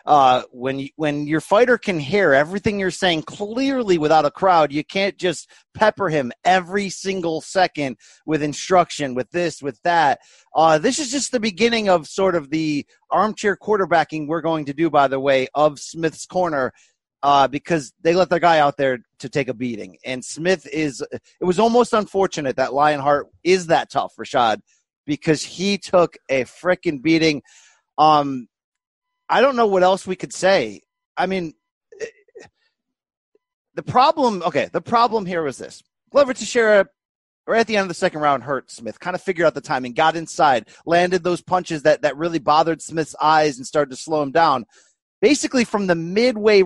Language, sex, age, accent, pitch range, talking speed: English, male, 30-49, American, 150-205 Hz, 180 wpm